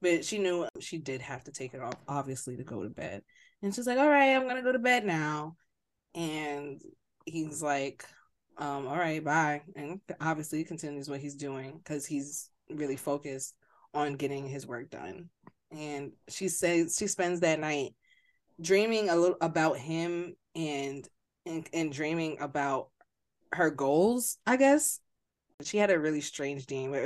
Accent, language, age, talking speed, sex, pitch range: American, English, 20-39, 170 wpm, female, 140-165 Hz